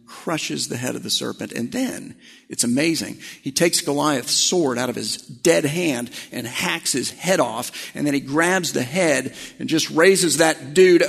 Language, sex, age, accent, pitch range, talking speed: English, male, 50-69, American, 160-270 Hz, 190 wpm